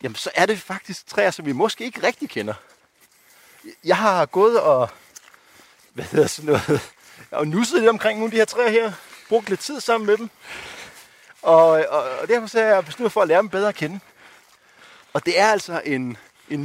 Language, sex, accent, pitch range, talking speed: Danish, male, native, 140-215 Hz, 200 wpm